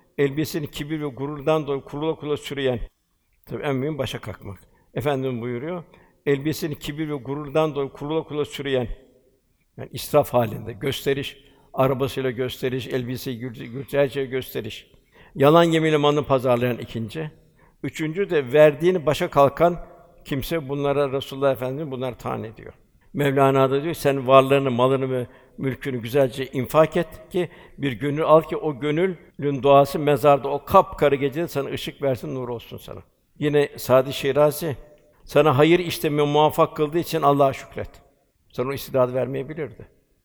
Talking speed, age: 135 wpm, 60-79